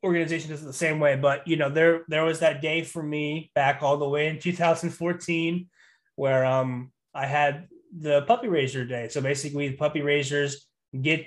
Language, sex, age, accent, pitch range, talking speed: English, male, 20-39, American, 140-180 Hz, 185 wpm